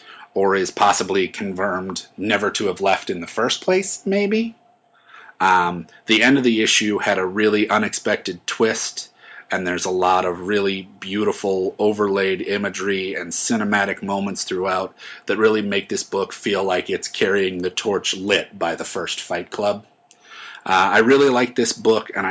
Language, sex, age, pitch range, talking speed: English, male, 30-49, 95-110 Hz, 165 wpm